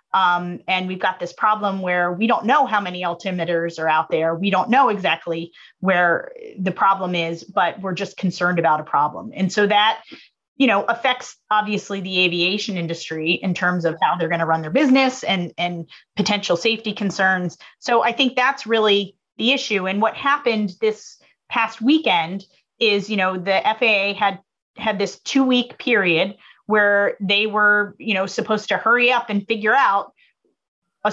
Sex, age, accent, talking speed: female, 30-49, American, 180 wpm